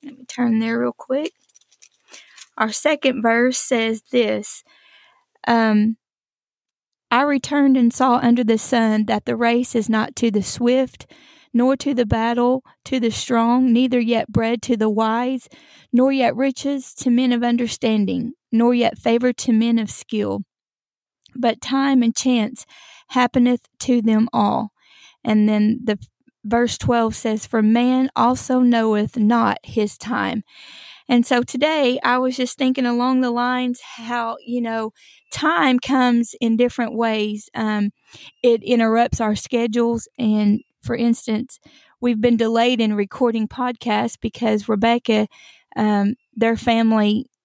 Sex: female